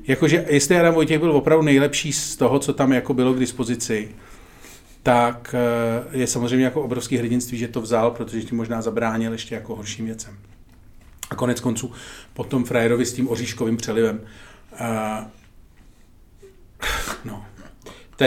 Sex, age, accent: male, 40-59, native